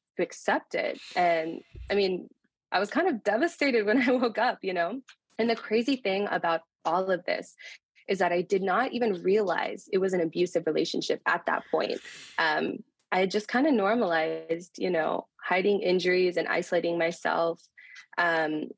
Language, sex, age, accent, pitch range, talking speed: English, female, 20-39, American, 170-215 Hz, 175 wpm